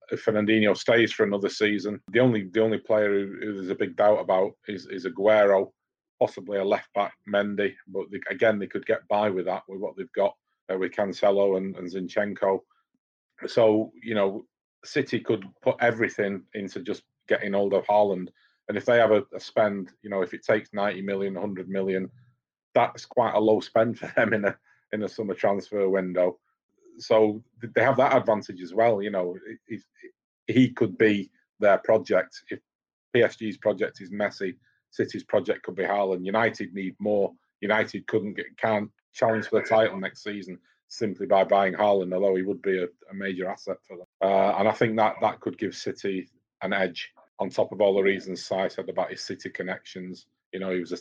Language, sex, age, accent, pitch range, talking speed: English, male, 30-49, British, 95-105 Hz, 190 wpm